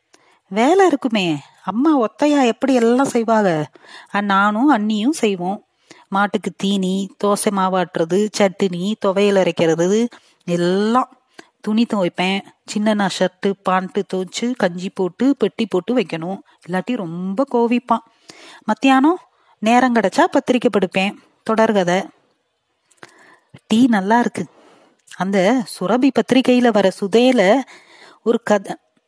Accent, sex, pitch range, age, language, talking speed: native, female, 195-260 Hz, 30-49, Tamil, 100 wpm